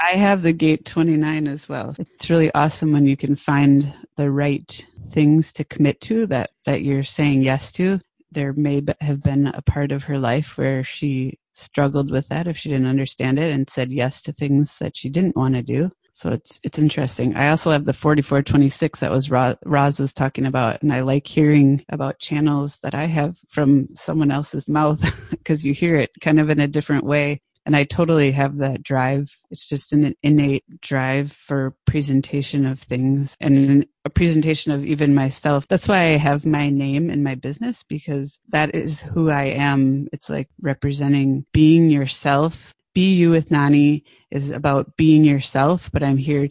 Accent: American